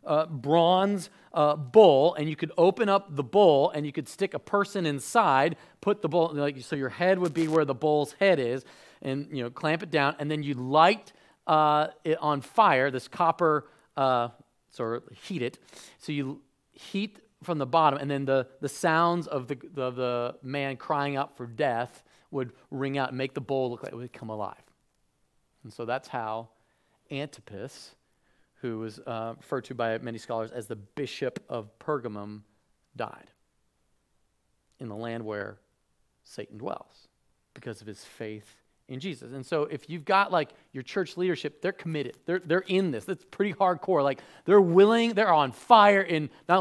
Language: English